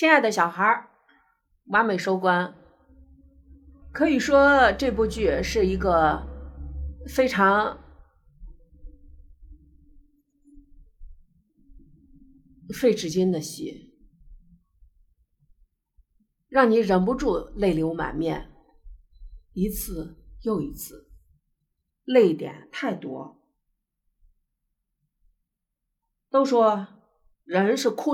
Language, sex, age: Chinese, female, 50-69